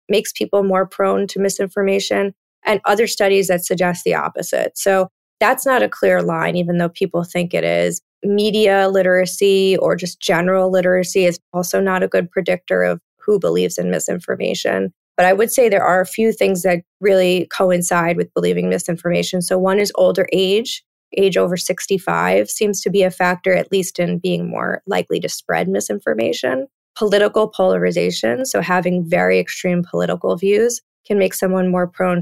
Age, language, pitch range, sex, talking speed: 20-39, English, 170-195 Hz, female, 170 wpm